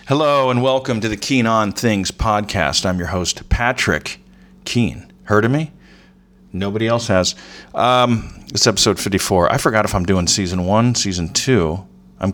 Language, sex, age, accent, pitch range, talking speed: English, male, 40-59, American, 85-120 Hz, 165 wpm